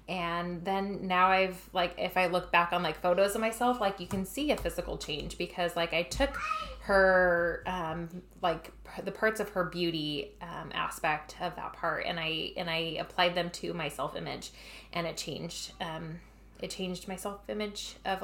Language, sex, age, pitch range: English, female, 20-39, 170-195 Hz